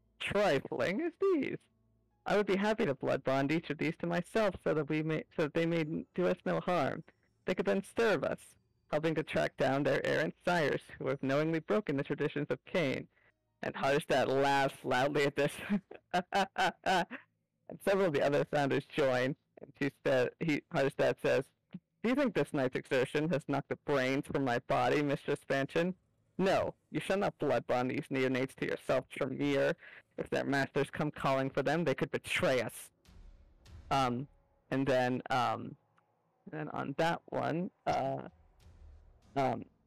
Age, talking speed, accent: 40-59, 170 wpm, American